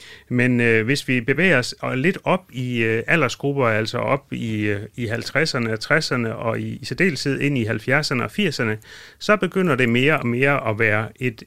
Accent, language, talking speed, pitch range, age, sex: native, Danish, 190 wpm, 115-150 Hz, 30-49, male